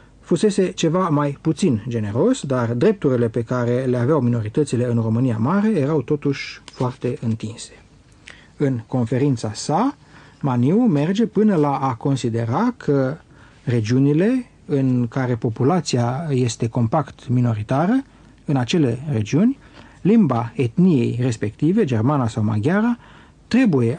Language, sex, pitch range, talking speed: Romanian, male, 120-160 Hz, 115 wpm